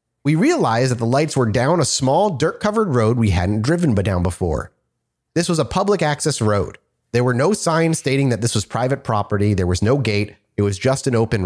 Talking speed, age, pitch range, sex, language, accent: 215 wpm, 30-49, 115-160 Hz, male, English, American